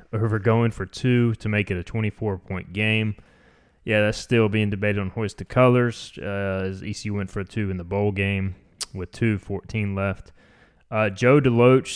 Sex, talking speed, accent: male, 185 wpm, American